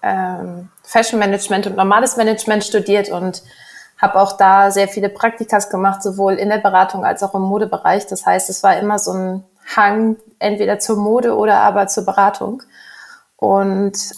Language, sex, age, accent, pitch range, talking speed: German, female, 20-39, German, 190-210 Hz, 155 wpm